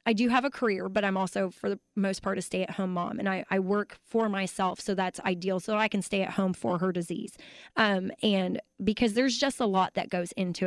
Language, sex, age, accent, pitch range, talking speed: English, female, 20-39, American, 185-215 Hz, 240 wpm